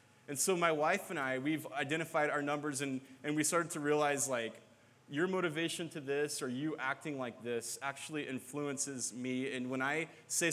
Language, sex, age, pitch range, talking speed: English, male, 20-39, 125-155 Hz, 190 wpm